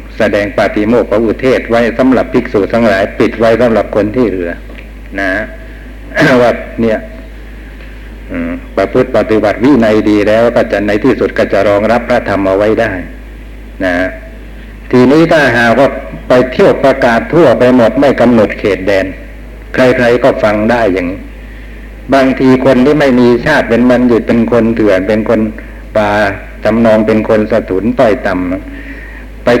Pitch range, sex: 110-130 Hz, male